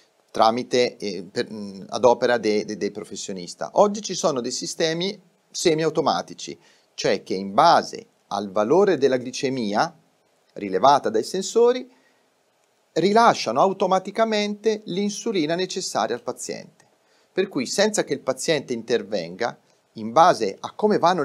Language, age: Italian, 40-59